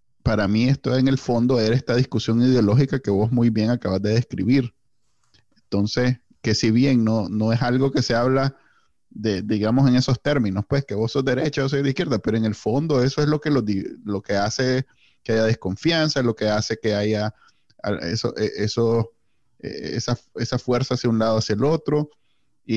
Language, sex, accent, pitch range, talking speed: Spanish, male, Venezuelan, 110-130 Hz, 195 wpm